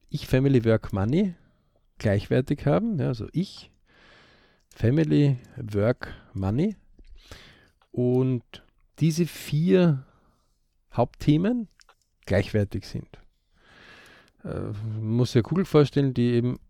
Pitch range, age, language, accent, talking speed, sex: 110-145 Hz, 50-69, German, German, 70 wpm, male